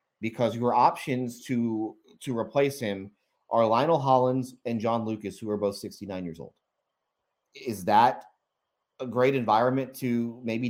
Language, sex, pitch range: English, male, 110-130 Hz